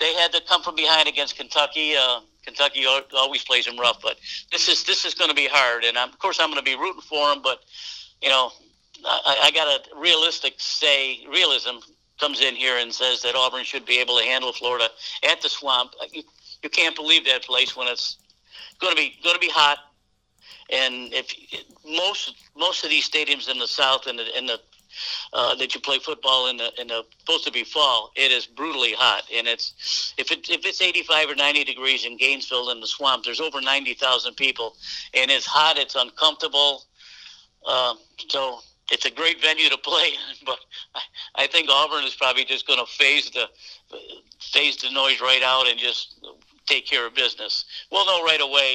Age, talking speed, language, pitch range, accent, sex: 60-79, 205 wpm, English, 125-160 Hz, American, male